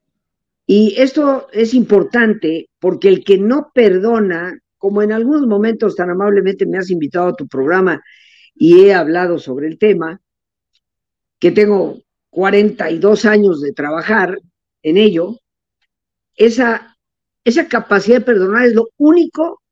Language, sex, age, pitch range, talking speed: Spanish, female, 50-69, 180-235 Hz, 130 wpm